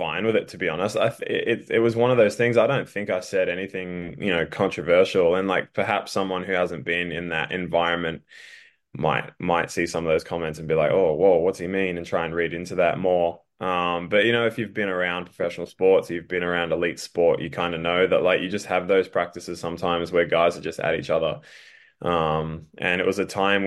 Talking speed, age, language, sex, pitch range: 240 wpm, 10-29, English, male, 85-100 Hz